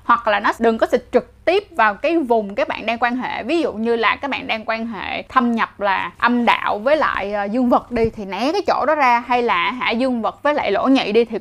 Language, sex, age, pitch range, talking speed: Vietnamese, female, 20-39, 230-295 Hz, 275 wpm